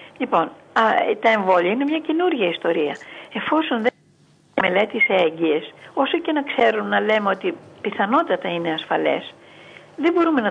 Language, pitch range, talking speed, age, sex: Greek, 205-305 Hz, 155 wpm, 50-69, female